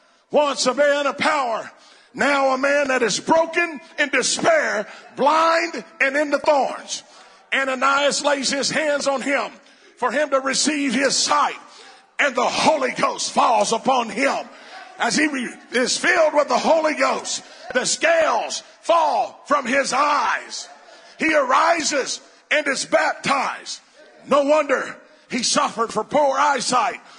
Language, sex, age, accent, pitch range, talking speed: English, male, 50-69, American, 255-300 Hz, 140 wpm